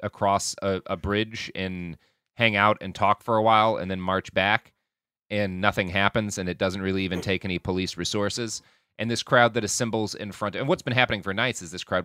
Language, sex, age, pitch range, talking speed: English, male, 30-49, 95-120 Hz, 220 wpm